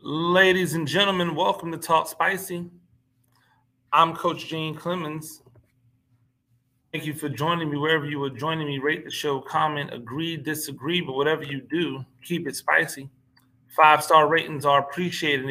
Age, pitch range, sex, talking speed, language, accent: 30-49, 120-155 Hz, male, 145 wpm, English, American